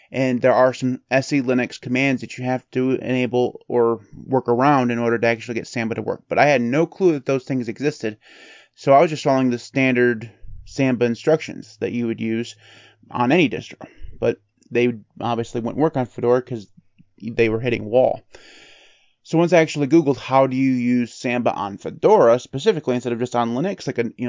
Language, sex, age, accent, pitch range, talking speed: English, male, 30-49, American, 120-135 Hz, 200 wpm